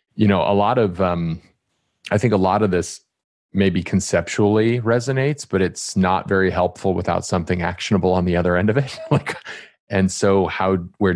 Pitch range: 90-105 Hz